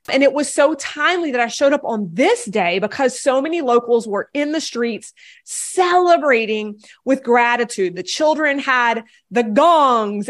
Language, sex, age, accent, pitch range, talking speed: English, female, 30-49, American, 225-310 Hz, 165 wpm